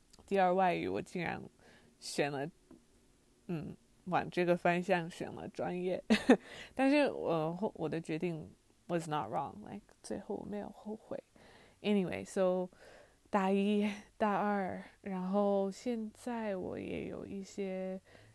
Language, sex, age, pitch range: English, female, 20-39, 175-210 Hz